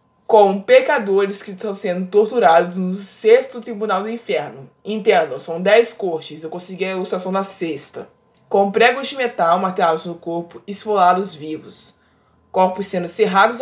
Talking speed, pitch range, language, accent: 145 wpm, 180-245 Hz, Portuguese, Brazilian